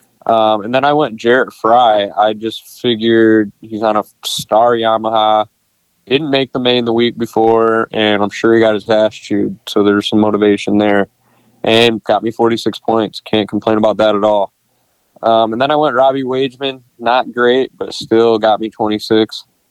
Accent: American